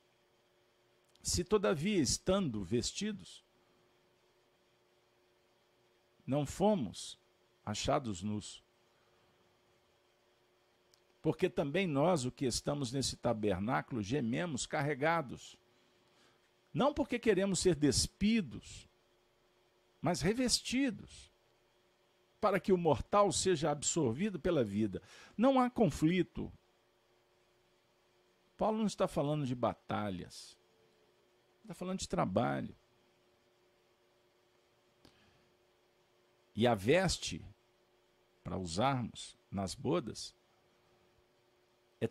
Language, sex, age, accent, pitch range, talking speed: Portuguese, male, 50-69, Brazilian, 115-175 Hz, 75 wpm